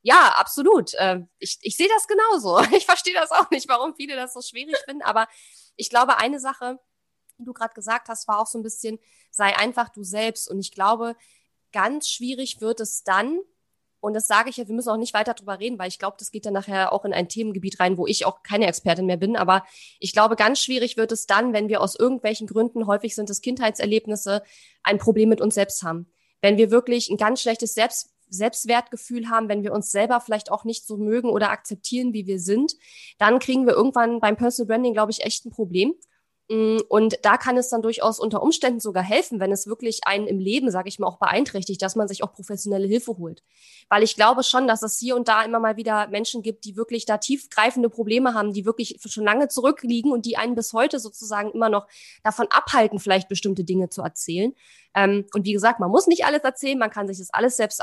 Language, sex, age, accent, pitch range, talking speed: German, female, 20-39, German, 205-240 Hz, 225 wpm